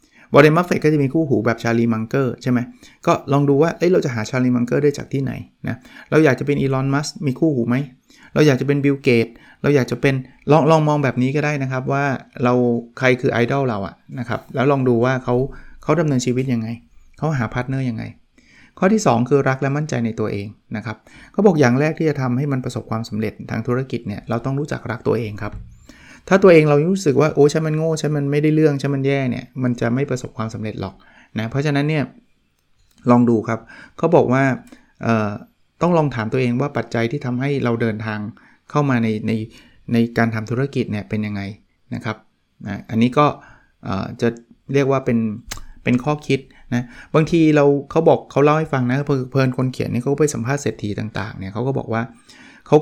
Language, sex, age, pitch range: Thai, male, 20-39, 115-145 Hz